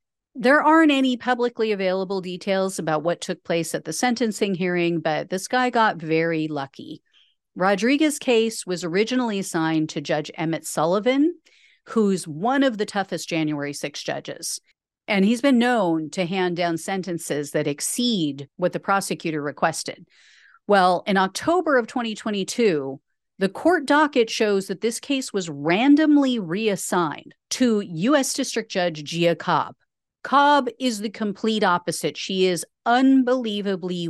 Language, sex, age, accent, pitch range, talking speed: English, female, 40-59, American, 170-245 Hz, 140 wpm